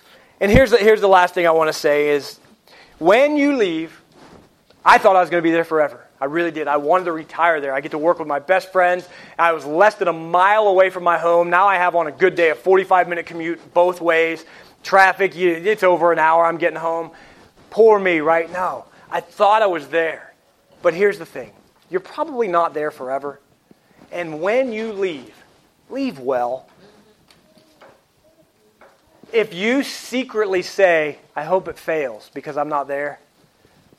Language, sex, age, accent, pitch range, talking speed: English, male, 40-59, American, 160-195 Hz, 185 wpm